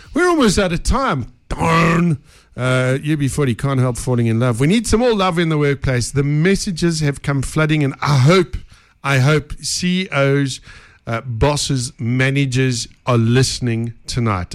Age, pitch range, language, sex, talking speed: 50-69, 110-145 Hz, English, male, 165 wpm